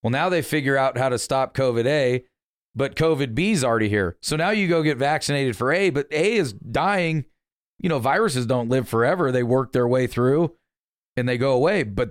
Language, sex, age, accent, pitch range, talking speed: English, male, 40-59, American, 115-135 Hz, 220 wpm